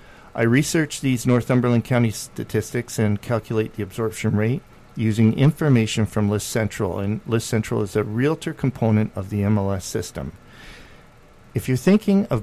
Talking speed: 150 wpm